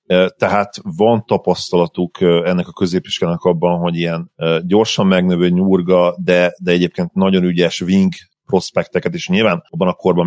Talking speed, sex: 140 wpm, male